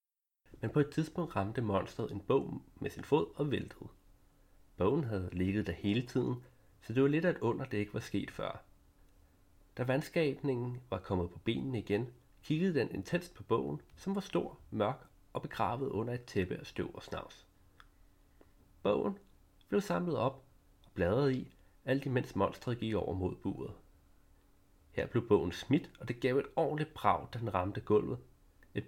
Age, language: 30-49, Danish